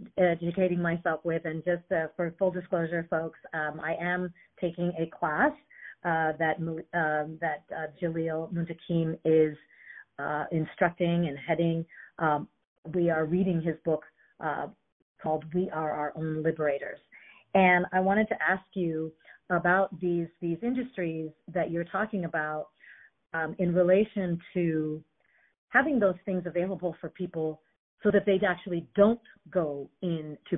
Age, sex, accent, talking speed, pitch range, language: 40-59, female, American, 140 wpm, 160-190 Hz, English